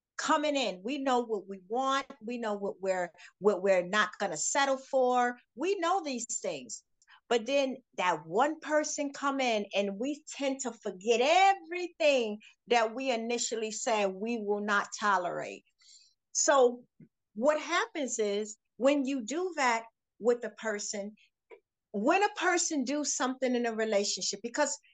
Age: 50-69